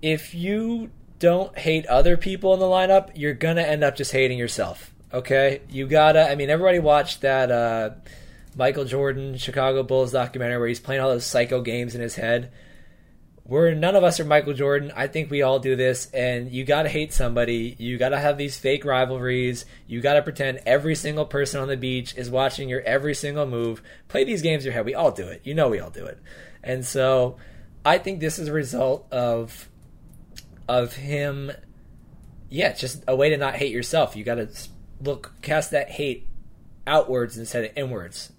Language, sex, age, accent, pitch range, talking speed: English, male, 20-39, American, 120-150 Hz, 205 wpm